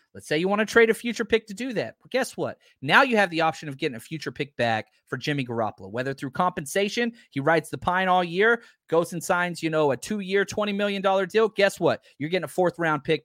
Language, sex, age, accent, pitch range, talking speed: English, male, 30-49, American, 145-195 Hz, 245 wpm